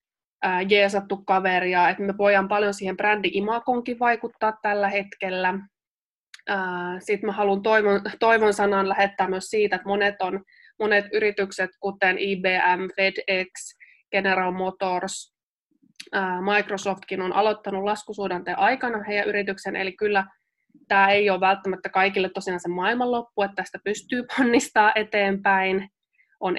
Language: Finnish